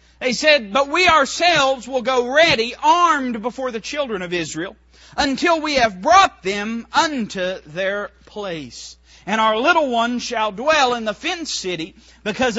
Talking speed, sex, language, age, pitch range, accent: 155 wpm, male, English, 40-59, 165-255 Hz, American